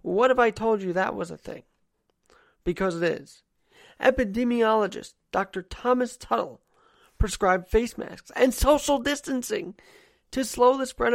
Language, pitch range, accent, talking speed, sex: English, 185-230 Hz, American, 140 wpm, male